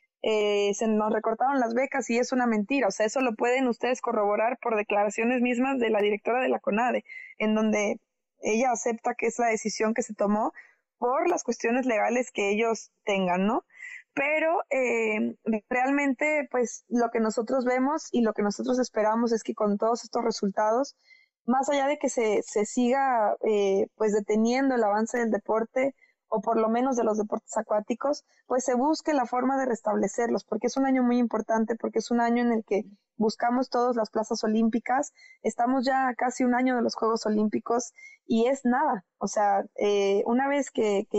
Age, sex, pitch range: 20-39, female, 220-255 Hz